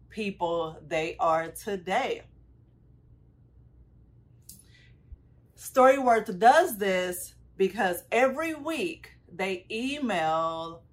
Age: 30-49